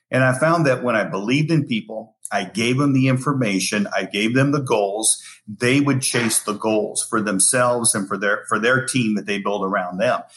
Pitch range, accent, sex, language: 105-130 Hz, American, male, English